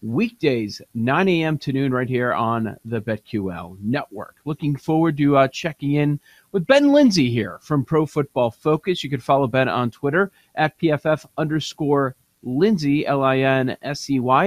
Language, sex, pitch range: English, male, 135-180 Hz